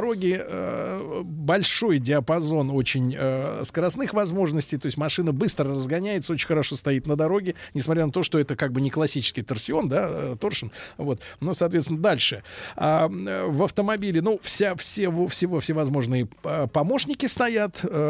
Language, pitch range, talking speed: Russian, 135-180 Hz, 145 wpm